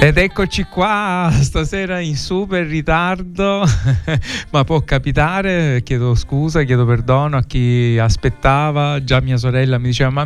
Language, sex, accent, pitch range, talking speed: Italian, male, native, 115-140 Hz, 135 wpm